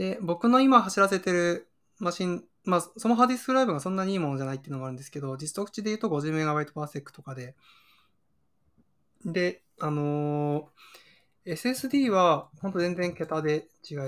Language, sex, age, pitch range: Japanese, male, 20-39, 140-175 Hz